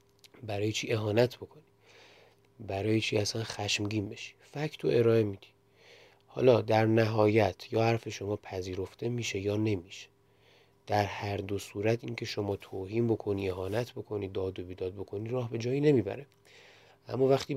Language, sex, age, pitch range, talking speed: Persian, male, 30-49, 95-115 Hz, 145 wpm